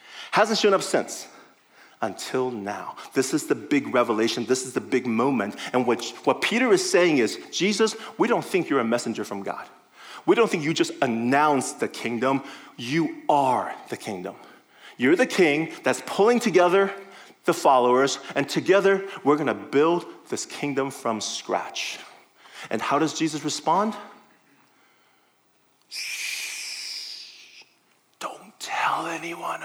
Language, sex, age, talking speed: English, male, 30-49, 135 wpm